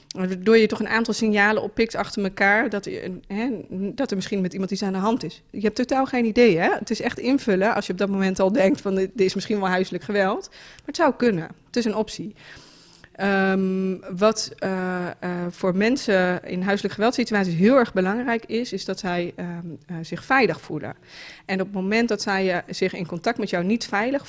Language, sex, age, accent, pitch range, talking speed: Dutch, female, 20-39, Dutch, 180-215 Hz, 210 wpm